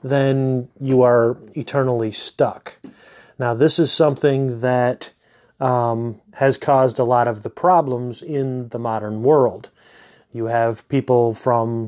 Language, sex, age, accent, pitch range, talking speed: English, male, 30-49, American, 120-140 Hz, 130 wpm